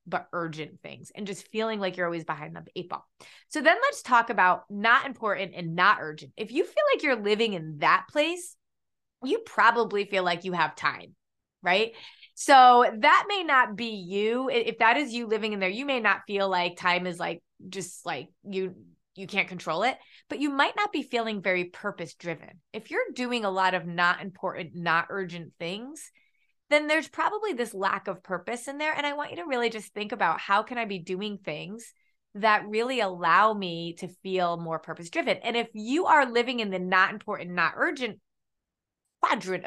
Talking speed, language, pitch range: 200 wpm, English, 180-240 Hz